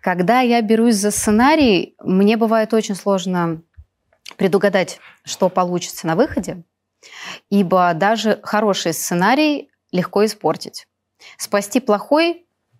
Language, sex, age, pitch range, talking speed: Russian, female, 20-39, 165-210 Hz, 105 wpm